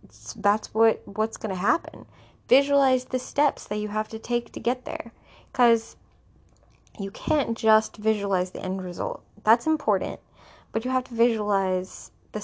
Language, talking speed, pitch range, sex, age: English, 155 wpm, 190-230 Hz, female, 20-39